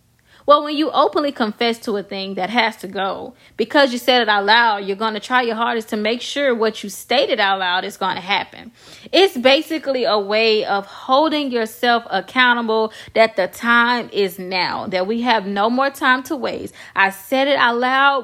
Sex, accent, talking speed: female, American, 205 wpm